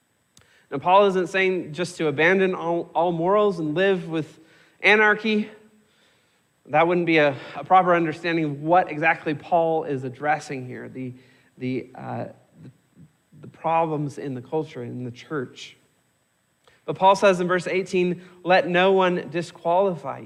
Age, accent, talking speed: 40-59, American, 150 wpm